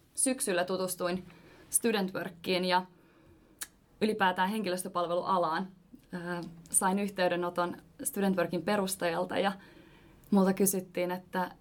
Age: 20-39